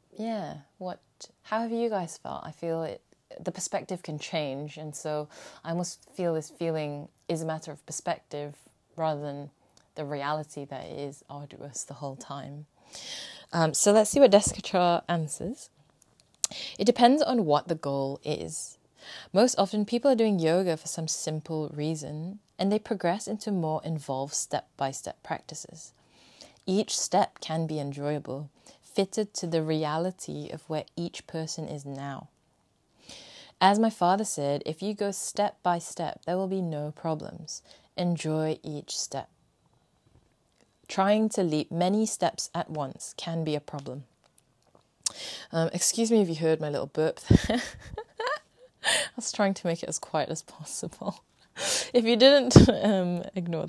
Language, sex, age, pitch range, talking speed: English, female, 20-39, 150-200 Hz, 150 wpm